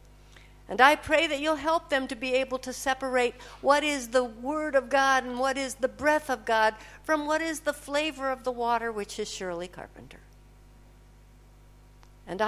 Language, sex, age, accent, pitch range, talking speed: English, female, 60-79, American, 235-295 Hz, 185 wpm